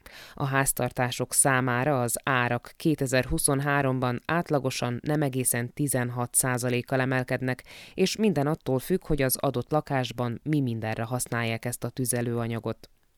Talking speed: 120 wpm